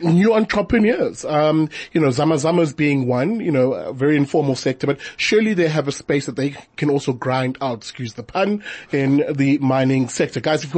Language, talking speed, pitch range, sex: English, 200 wpm, 135-175 Hz, male